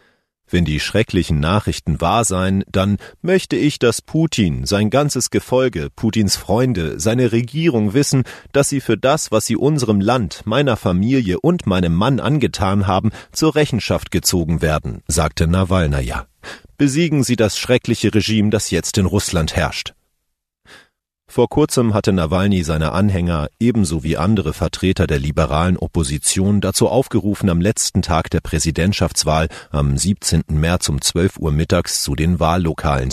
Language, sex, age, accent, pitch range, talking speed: German, male, 40-59, German, 80-115 Hz, 145 wpm